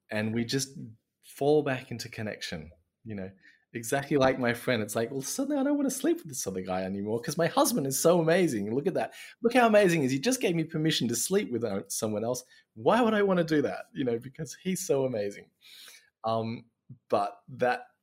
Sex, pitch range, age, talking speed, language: male, 95-130 Hz, 20-39, 220 wpm, English